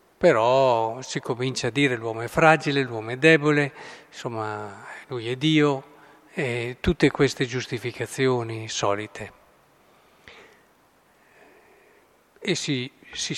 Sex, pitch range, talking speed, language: male, 125-165 Hz, 105 wpm, Italian